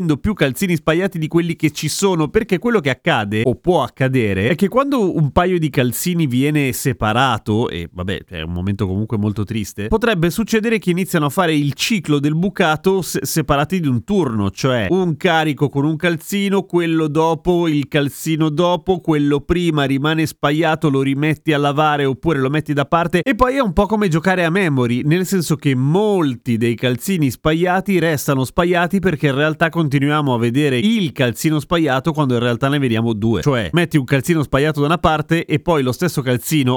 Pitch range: 120-170 Hz